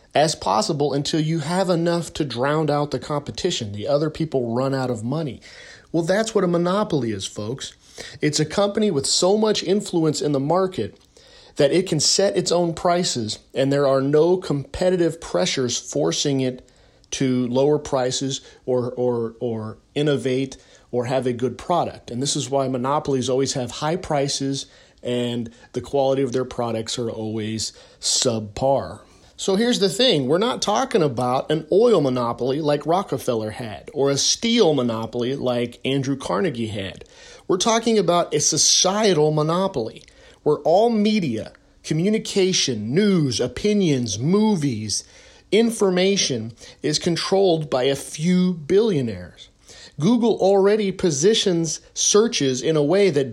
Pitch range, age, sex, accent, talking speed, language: 125-180 Hz, 40-59, male, American, 145 wpm, English